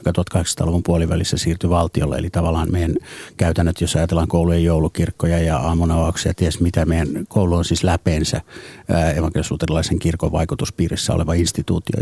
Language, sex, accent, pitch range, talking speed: Finnish, male, native, 85-100 Hz, 140 wpm